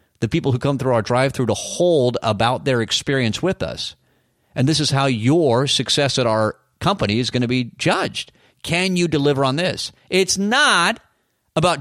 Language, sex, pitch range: English, male, 115-140 Hz